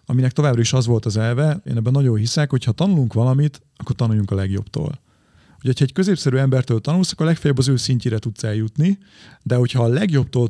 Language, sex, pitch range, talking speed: Hungarian, male, 115-145 Hz, 200 wpm